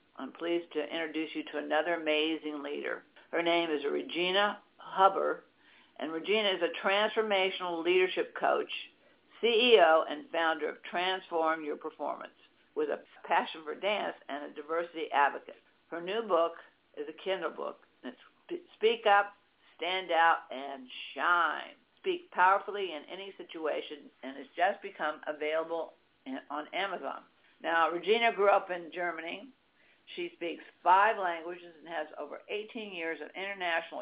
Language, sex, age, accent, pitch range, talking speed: English, female, 60-79, American, 160-210 Hz, 140 wpm